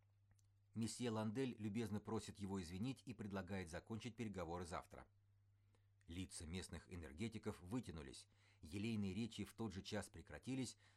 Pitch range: 90-105 Hz